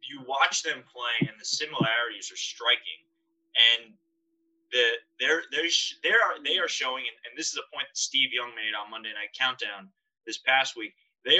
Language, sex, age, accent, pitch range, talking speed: English, male, 20-39, American, 115-160 Hz, 180 wpm